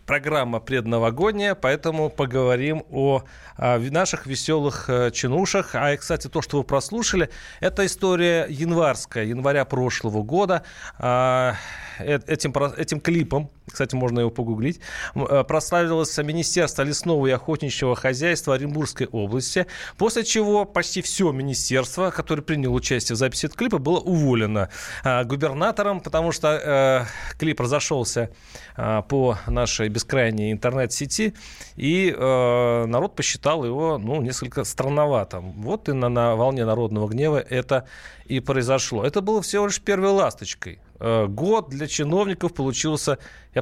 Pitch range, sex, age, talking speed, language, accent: 120-160 Hz, male, 30-49, 120 wpm, Russian, native